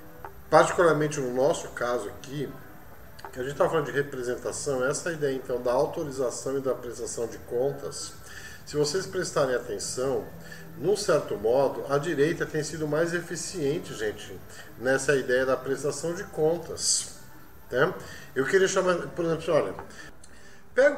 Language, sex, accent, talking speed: Portuguese, male, Brazilian, 145 wpm